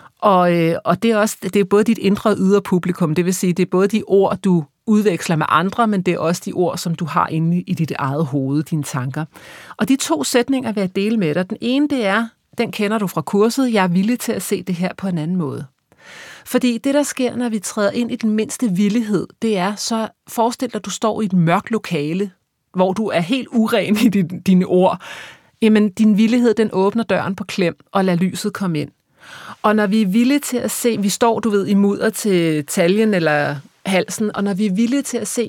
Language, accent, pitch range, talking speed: Danish, native, 185-230 Hz, 235 wpm